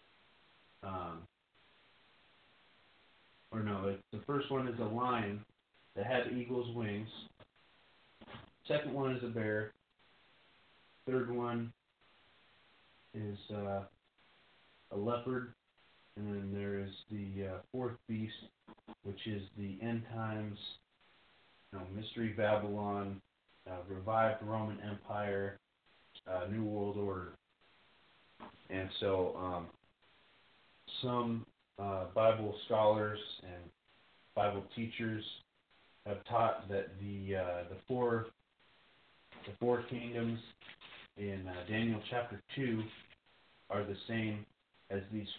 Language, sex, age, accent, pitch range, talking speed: English, male, 30-49, American, 100-115 Hz, 105 wpm